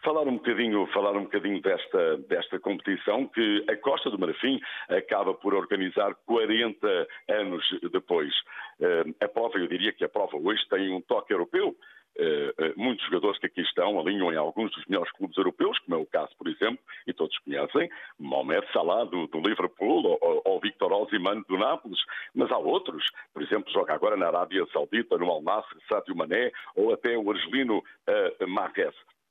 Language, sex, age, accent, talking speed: Portuguese, male, 60-79, Brazilian, 170 wpm